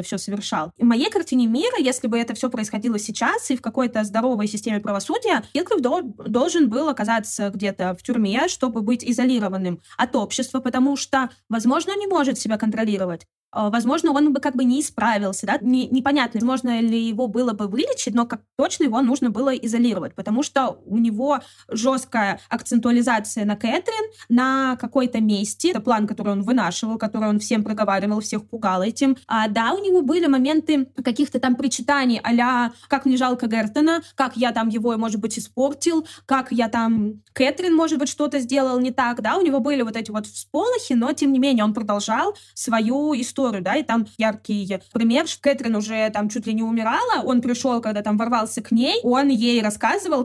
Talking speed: 180 wpm